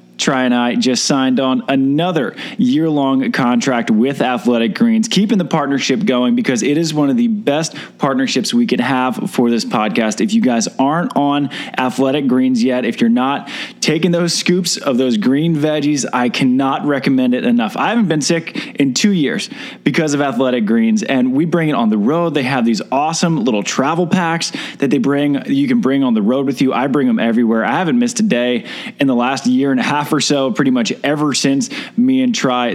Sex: male